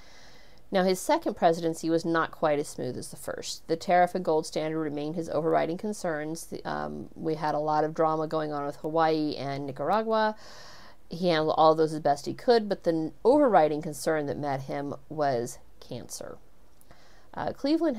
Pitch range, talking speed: 150-180 Hz, 185 wpm